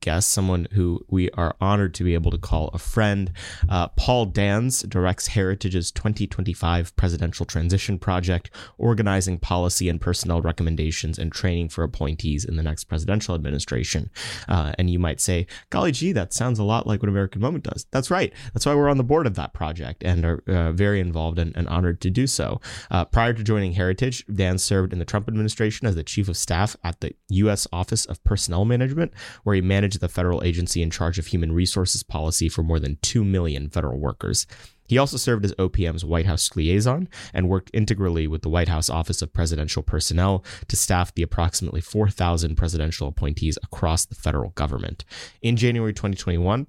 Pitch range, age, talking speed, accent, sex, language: 85-105 Hz, 30-49, 190 wpm, American, male, English